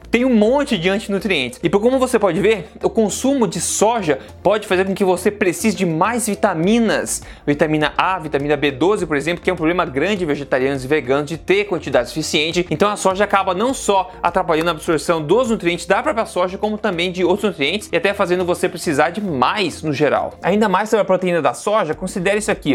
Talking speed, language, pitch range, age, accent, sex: 210 wpm, Portuguese, 160-210 Hz, 20-39, Brazilian, male